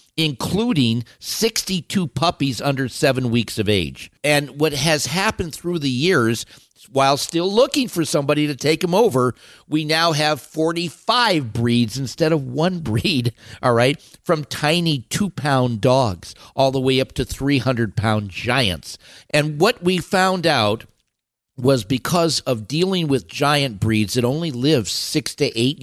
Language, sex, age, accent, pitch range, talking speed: English, male, 50-69, American, 115-150 Hz, 150 wpm